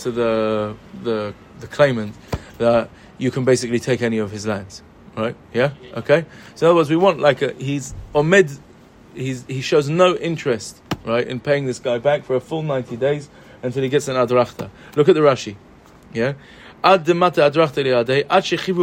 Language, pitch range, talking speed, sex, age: English, 125-170 Hz, 165 wpm, male, 30-49